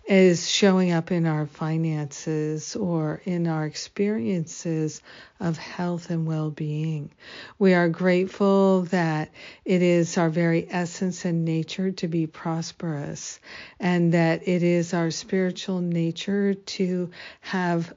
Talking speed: 125 wpm